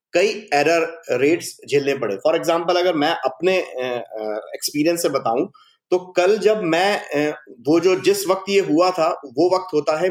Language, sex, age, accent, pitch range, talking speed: Hindi, male, 30-49, native, 155-225 Hz, 165 wpm